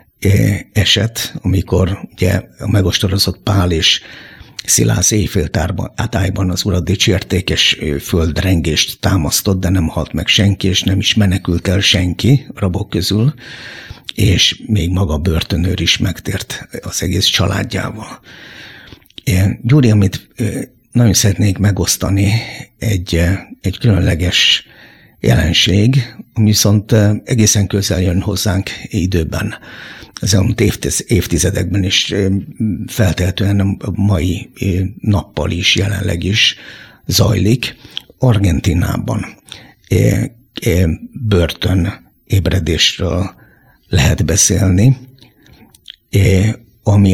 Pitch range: 90-110 Hz